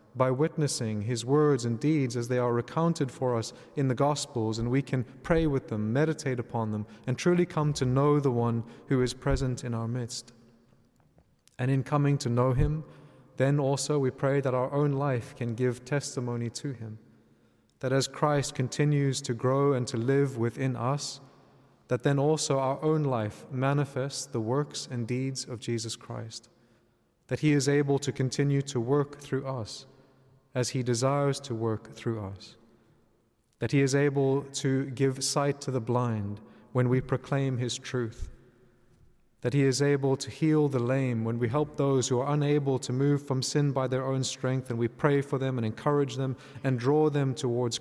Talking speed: 185 wpm